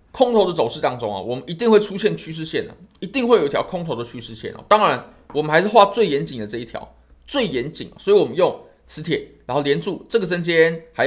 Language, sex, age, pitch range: Chinese, male, 20-39, 145-220 Hz